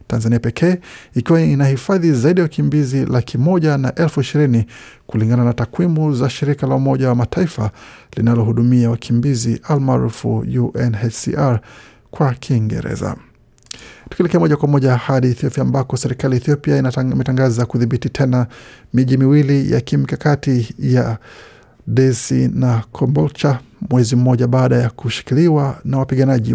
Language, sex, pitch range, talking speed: Swahili, male, 120-145 Hz, 120 wpm